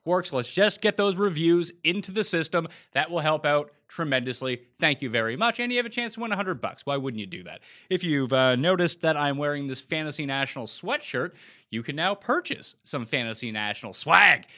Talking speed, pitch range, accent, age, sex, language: 210 wpm, 120-185 Hz, American, 30-49, male, English